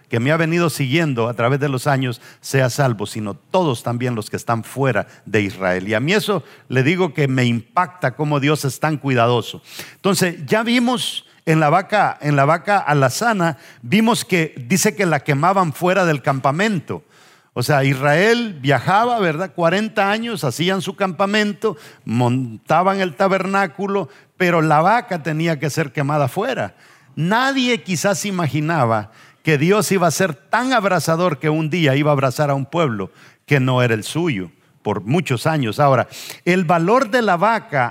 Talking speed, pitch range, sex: 170 wpm, 140-195 Hz, male